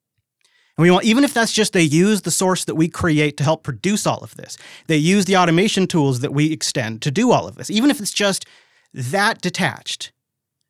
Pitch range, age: 140-180 Hz, 30-49